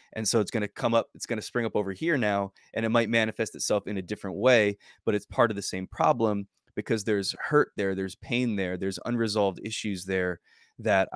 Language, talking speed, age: English, 230 wpm, 20-39